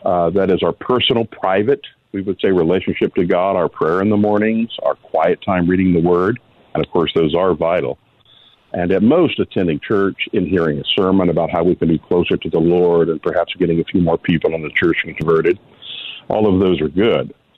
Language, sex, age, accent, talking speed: English, male, 50-69, American, 215 wpm